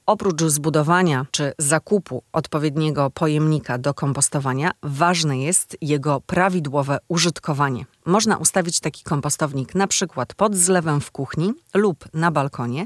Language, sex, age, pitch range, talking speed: Polish, female, 30-49, 150-185 Hz, 120 wpm